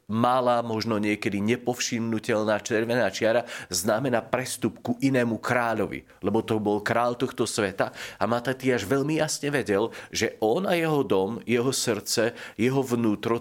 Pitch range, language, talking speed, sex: 110-130 Hz, Slovak, 145 wpm, male